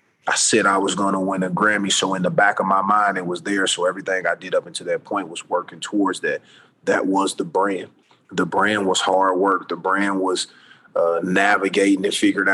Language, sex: English, male